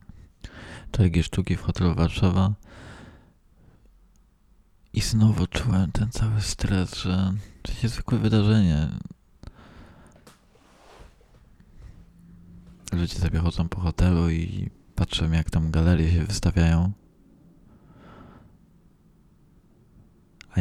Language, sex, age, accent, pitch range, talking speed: Polish, male, 20-39, native, 80-95 Hz, 85 wpm